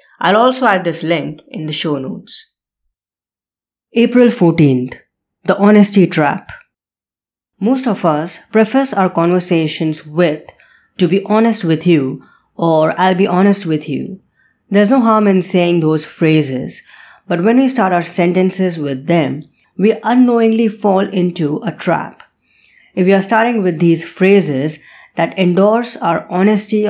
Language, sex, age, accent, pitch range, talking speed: English, female, 20-39, Indian, 160-210 Hz, 145 wpm